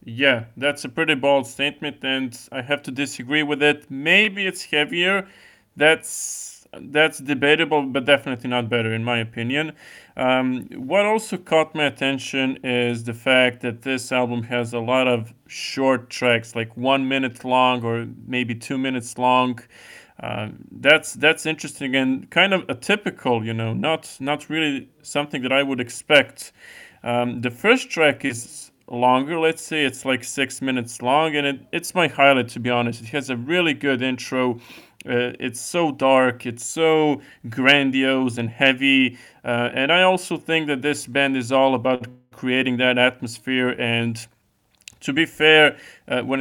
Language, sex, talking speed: English, male, 165 wpm